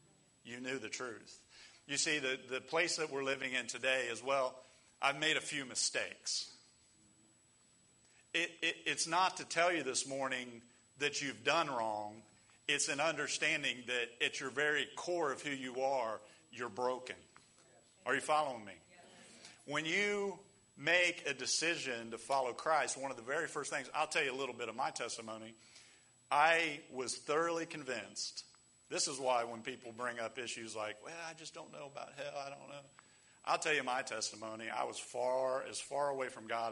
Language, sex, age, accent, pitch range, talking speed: English, male, 40-59, American, 115-135 Hz, 180 wpm